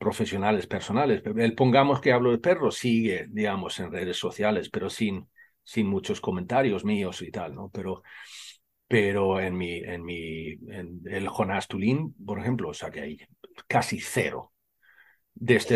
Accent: Spanish